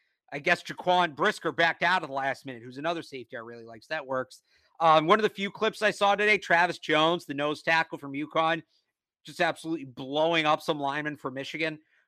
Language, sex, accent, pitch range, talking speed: English, male, American, 130-165 Hz, 215 wpm